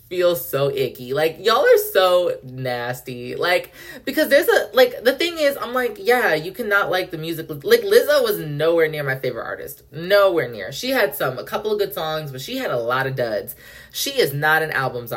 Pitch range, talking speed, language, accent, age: 145-235 Hz, 215 wpm, English, American, 20-39